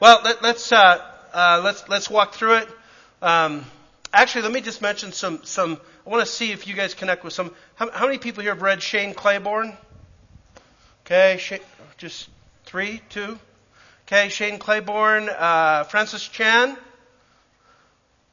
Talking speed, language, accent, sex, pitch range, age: 155 wpm, English, American, male, 150-205 Hz, 40-59